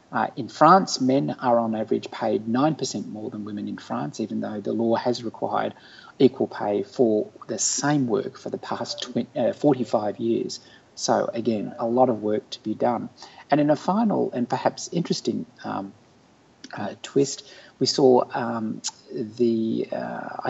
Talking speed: 165 wpm